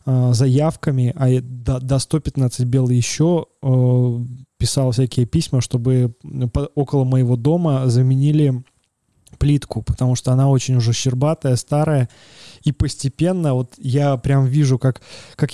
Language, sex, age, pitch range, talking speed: Russian, male, 20-39, 125-145 Hz, 115 wpm